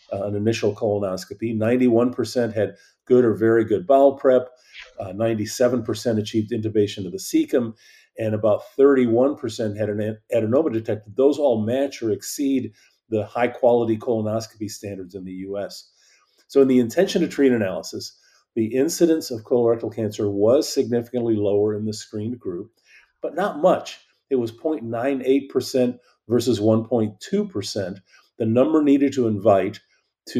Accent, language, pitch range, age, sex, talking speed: American, English, 110-125 Hz, 40-59, male, 135 wpm